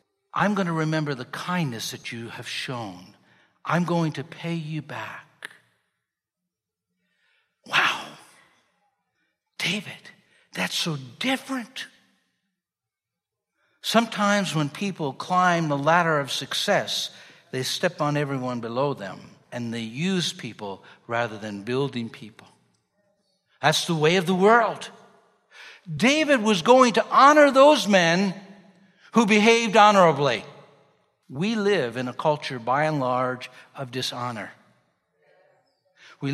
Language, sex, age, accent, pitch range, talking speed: English, male, 60-79, American, 140-200 Hz, 115 wpm